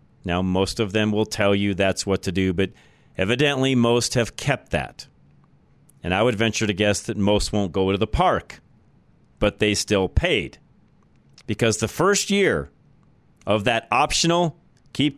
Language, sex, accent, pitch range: English, male, American, 95-125 Hz